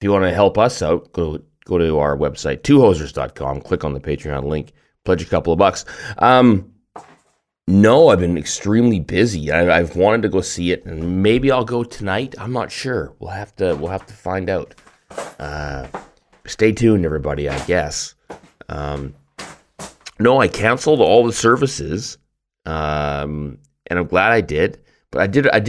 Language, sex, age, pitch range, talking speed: English, male, 30-49, 75-110 Hz, 175 wpm